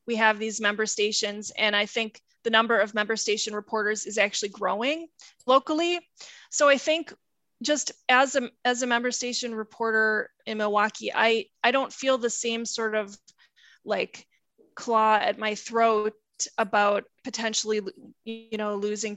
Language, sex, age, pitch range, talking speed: English, female, 20-39, 210-245 Hz, 155 wpm